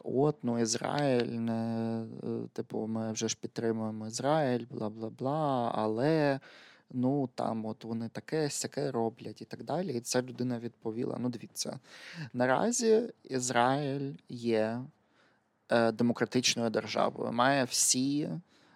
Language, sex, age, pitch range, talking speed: Ukrainian, male, 20-39, 115-140 Hz, 110 wpm